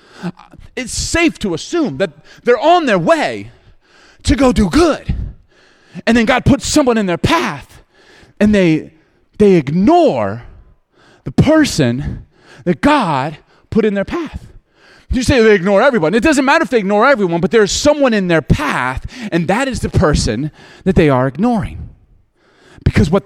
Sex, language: male, English